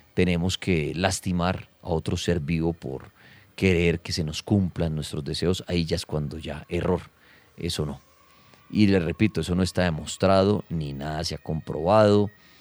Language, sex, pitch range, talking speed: Spanish, male, 85-105 Hz, 165 wpm